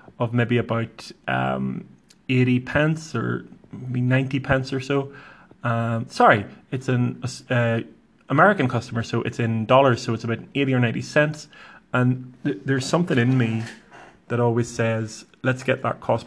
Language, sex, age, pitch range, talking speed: English, male, 20-39, 115-130 Hz, 160 wpm